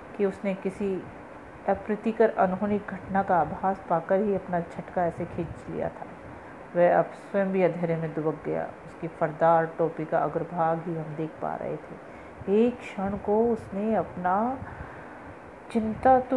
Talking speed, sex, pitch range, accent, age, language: 155 wpm, female, 165-205 Hz, native, 40-59, Hindi